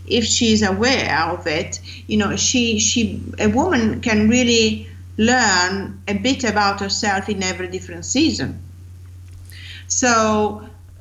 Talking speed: 130 wpm